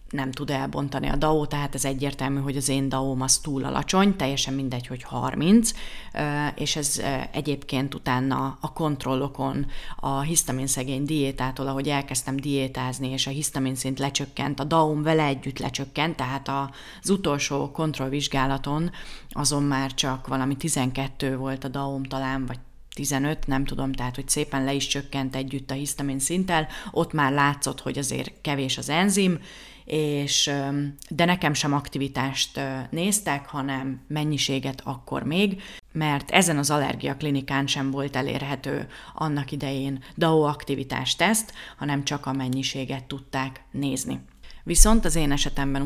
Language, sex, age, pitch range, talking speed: Hungarian, female, 30-49, 135-150 Hz, 145 wpm